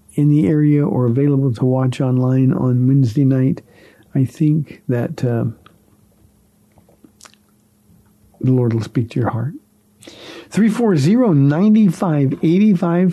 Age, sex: 50-69, male